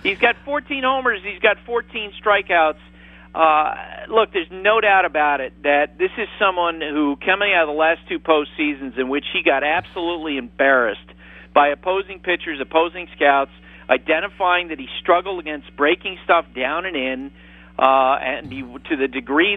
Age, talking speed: 50-69, 165 wpm